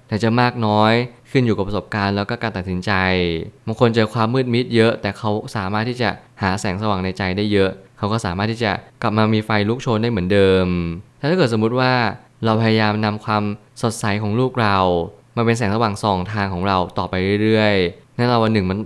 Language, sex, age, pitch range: Thai, male, 20-39, 100-115 Hz